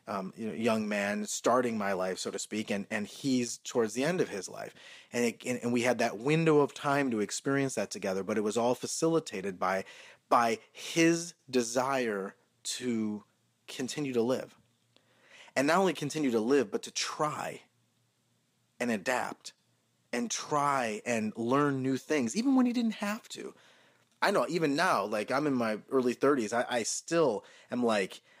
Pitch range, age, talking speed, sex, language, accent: 115-145 Hz, 30-49, 180 wpm, male, English, American